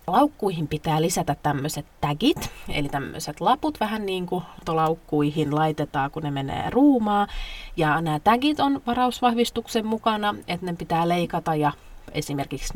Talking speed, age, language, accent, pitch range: 135 wpm, 30-49, Finnish, native, 150-195 Hz